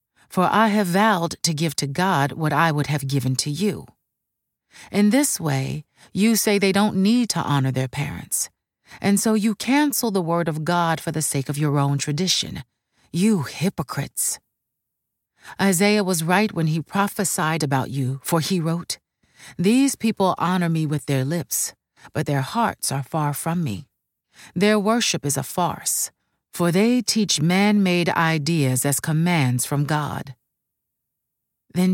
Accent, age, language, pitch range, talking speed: American, 40-59, English, 140-190 Hz, 160 wpm